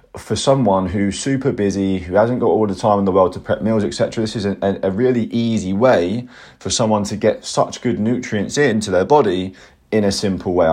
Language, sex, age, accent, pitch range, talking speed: English, male, 30-49, British, 95-125 Hz, 220 wpm